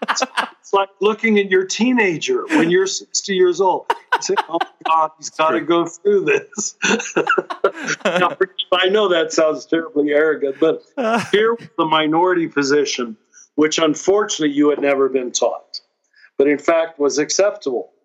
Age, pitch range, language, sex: 50-69, 145-195 Hz, English, male